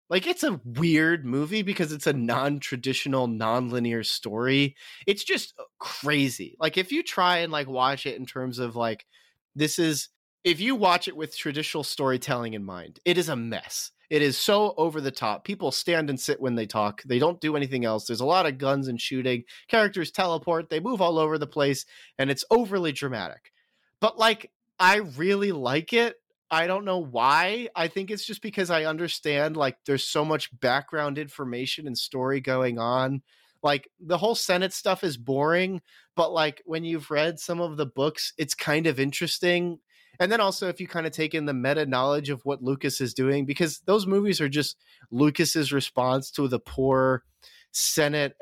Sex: male